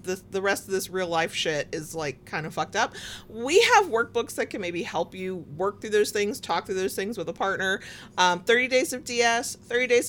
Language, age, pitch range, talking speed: English, 30-49, 165-215 Hz, 240 wpm